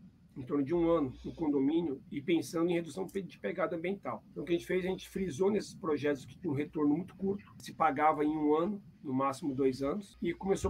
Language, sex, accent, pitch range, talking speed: Portuguese, male, Brazilian, 150-190 Hz, 235 wpm